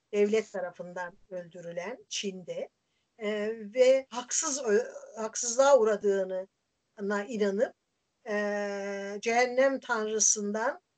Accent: native